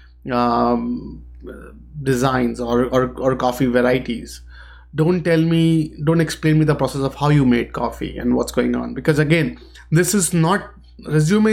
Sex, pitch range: male, 125-160 Hz